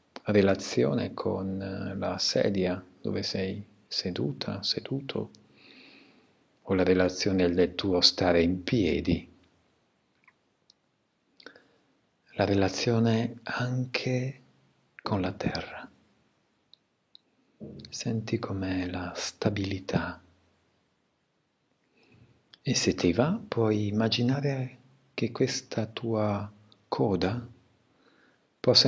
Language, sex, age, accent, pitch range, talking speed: Italian, male, 50-69, native, 90-120 Hz, 75 wpm